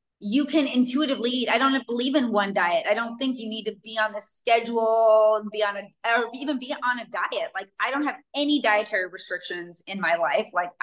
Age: 20-39